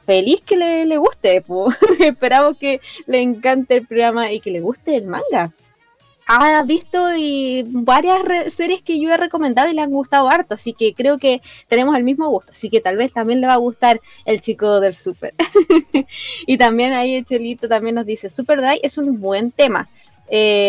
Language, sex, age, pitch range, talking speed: Spanish, female, 20-39, 230-320 Hz, 195 wpm